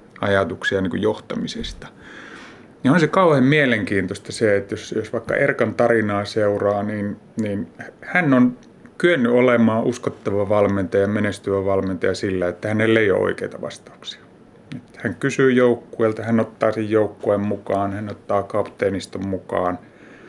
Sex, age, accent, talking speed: male, 30-49, native, 140 wpm